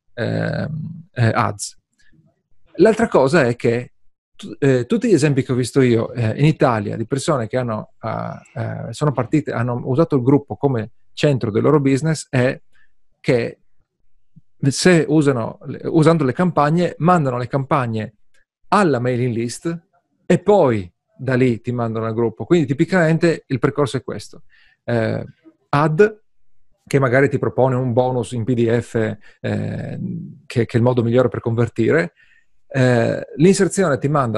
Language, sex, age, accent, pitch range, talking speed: Italian, male, 40-59, native, 120-160 Hz, 145 wpm